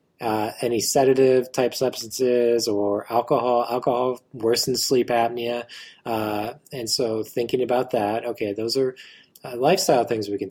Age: 20-39